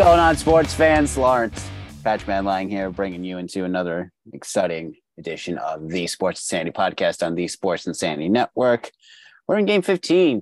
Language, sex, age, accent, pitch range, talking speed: English, male, 30-49, American, 95-125 Hz, 160 wpm